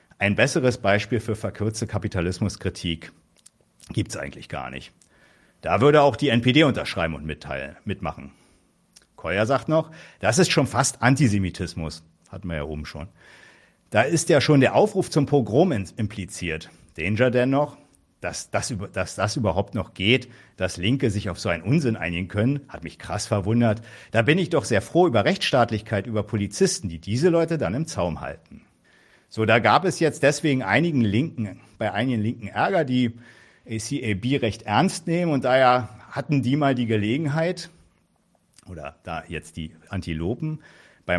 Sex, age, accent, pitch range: male, 50-69, German, 95-140 Hz